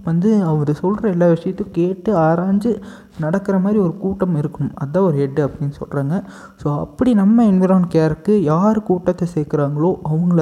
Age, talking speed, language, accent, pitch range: 20-39, 150 wpm, Tamil, native, 145-185 Hz